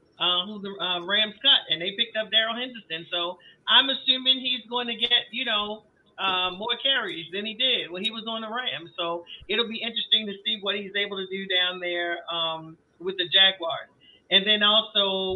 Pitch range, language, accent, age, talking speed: 175-215 Hz, English, American, 40-59, 205 wpm